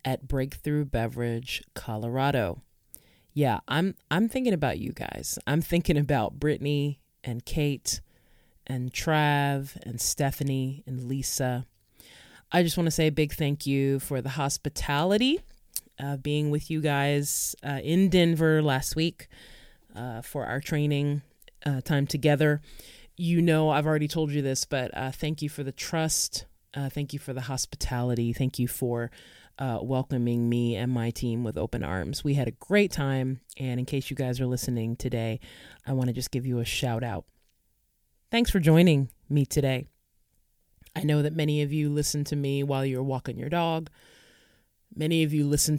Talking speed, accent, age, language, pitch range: 170 wpm, American, 30-49, English, 125-155 Hz